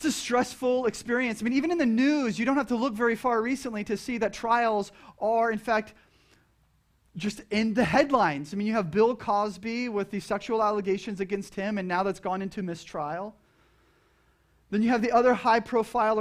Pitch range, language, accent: 205-250 Hz, English, American